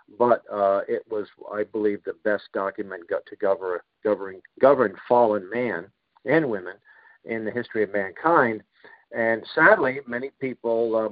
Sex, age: male, 50-69